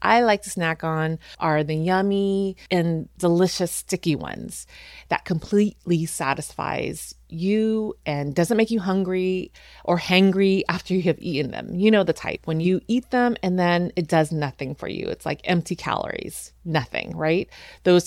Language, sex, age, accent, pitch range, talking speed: English, female, 30-49, American, 150-190 Hz, 165 wpm